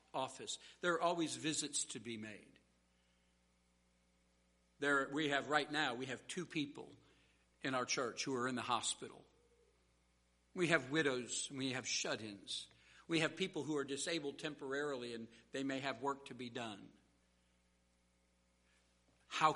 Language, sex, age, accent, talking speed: English, male, 60-79, American, 145 wpm